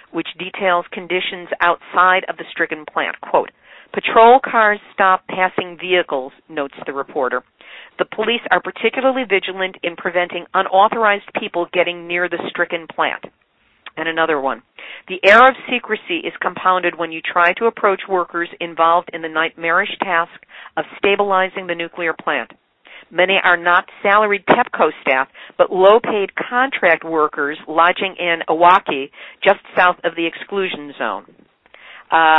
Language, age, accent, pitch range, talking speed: English, 50-69, American, 170-205 Hz, 140 wpm